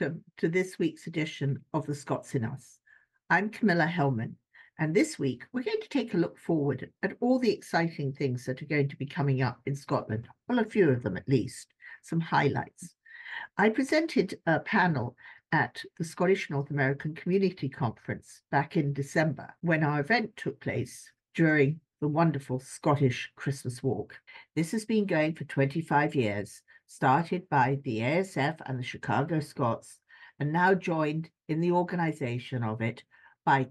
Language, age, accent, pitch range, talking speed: English, 50-69, British, 130-170 Hz, 170 wpm